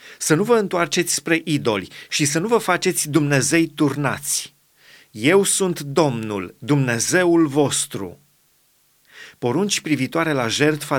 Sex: male